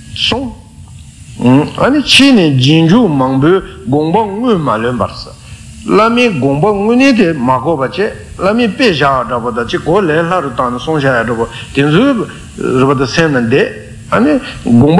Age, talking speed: 60-79, 70 wpm